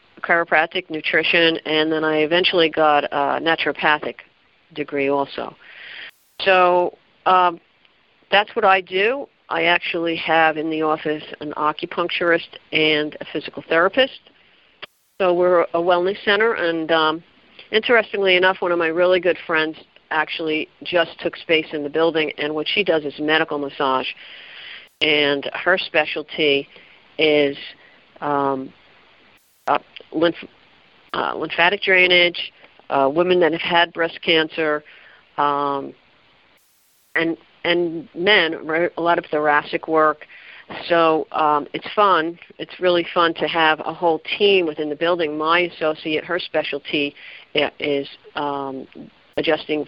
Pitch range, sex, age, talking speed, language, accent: 150-175 Hz, female, 50-69, 130 wpm, English, American